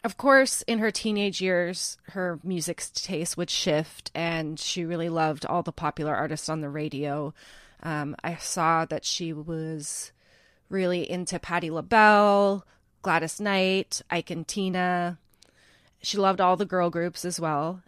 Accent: American